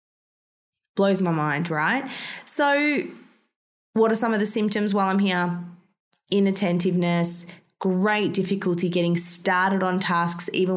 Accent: Australian